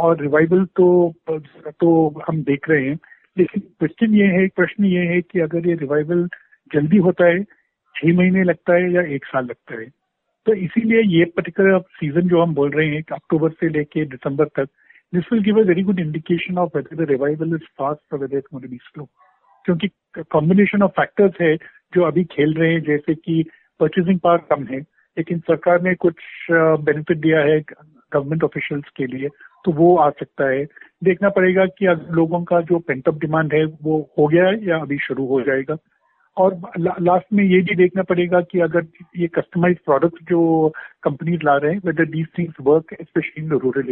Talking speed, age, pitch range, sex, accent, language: 185 wpm, 50-69, 155-180 Hz, male, native, Hindi